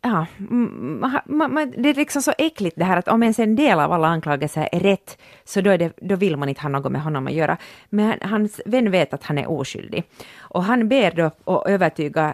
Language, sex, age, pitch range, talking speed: Swedish, female, 30-49, 165-225 Hz, 240 wpm